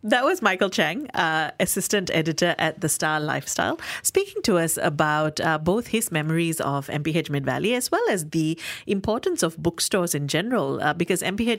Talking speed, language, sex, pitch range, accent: 180 wpm, English, female, 155-210 Hz, Indian